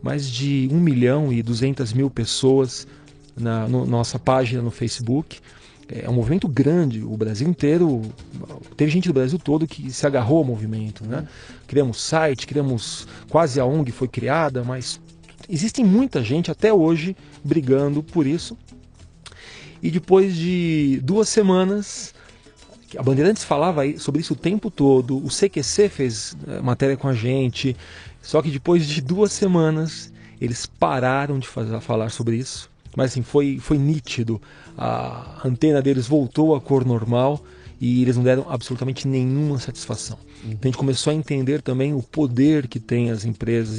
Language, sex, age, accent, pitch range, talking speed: Portuguese, male, 40-59, Brazilian, 120-155 Hz, 155 wpm